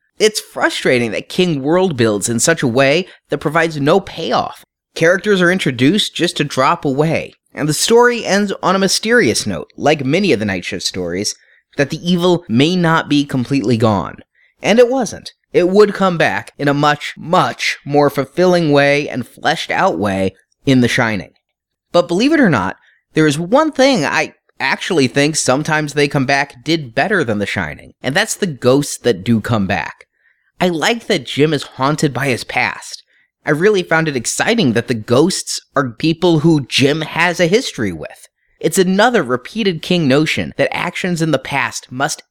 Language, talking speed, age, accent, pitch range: English, 185 wpm, 30-49, American, 135-180 Hz